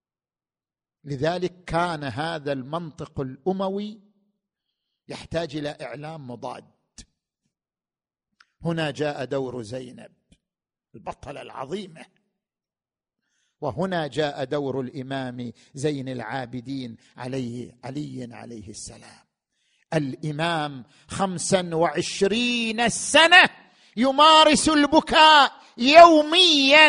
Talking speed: 70 wpm